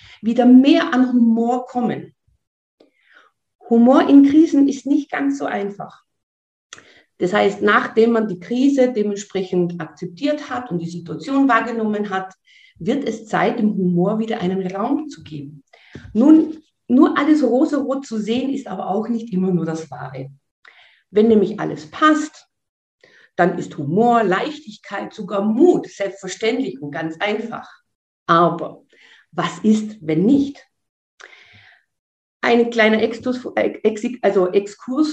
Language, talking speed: German, 125 wpm